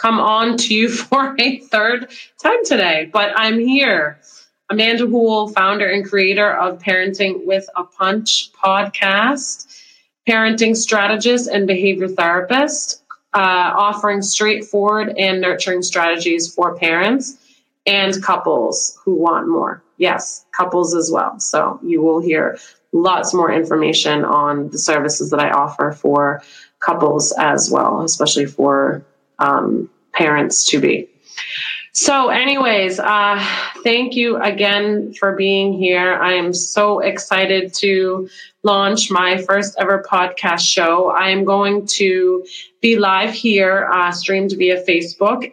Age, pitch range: 30-49, 185-220 Hz